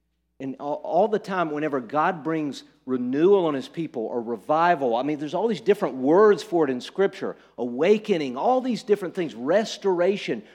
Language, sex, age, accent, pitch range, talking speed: English, male, 50-69, American, 150-210 Hz, 170 wpm